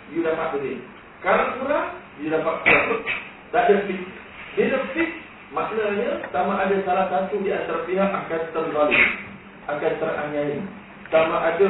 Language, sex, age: Malay, male, 50-69